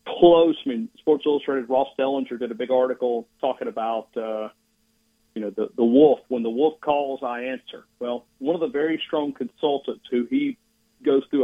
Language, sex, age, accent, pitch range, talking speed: English, male, 50-69, American, 125-195 Hz, 190 wpm